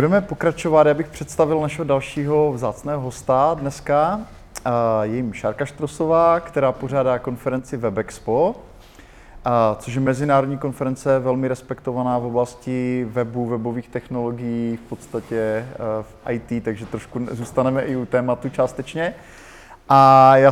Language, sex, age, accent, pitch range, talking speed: Czech, male, 20-39, native, 120-140 Hz, 125 wpm